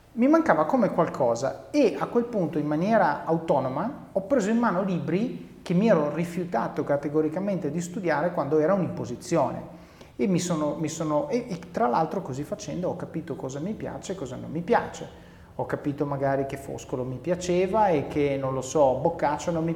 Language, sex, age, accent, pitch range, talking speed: Italian, male, 30-49, native, 140-195 Hz, 190 wpm